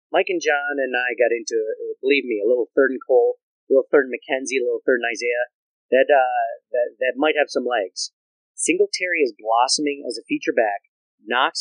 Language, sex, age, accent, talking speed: English, male, 30-49, American, 205 wpm